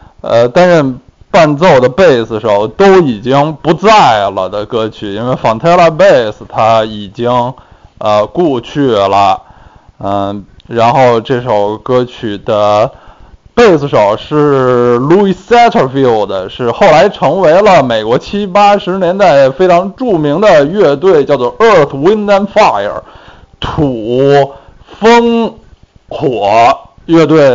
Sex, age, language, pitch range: male, 20-39, Chinese, 115-175 Hz